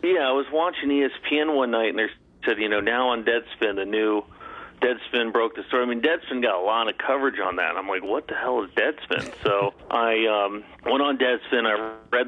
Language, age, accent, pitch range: English, 40-59, American, 105-125 Hz